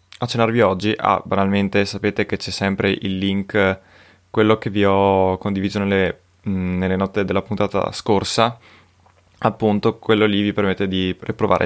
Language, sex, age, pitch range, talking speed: Italian, male, 20-39, 95-115 Hz, 150 wpm